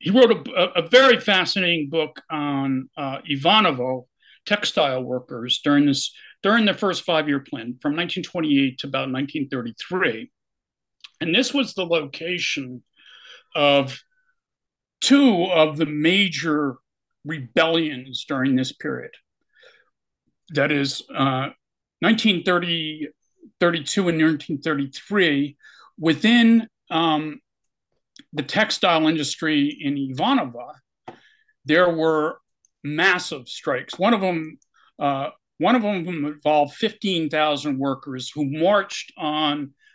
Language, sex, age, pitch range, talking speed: English, male, 50-69, 140-185 Hz, 105 wpm